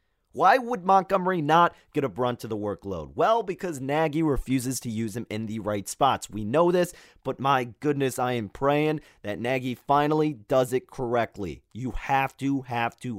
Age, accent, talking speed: 30-49, American, 185 wpm